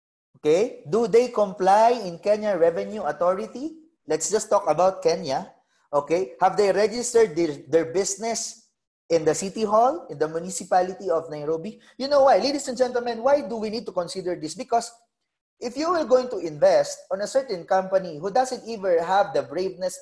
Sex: male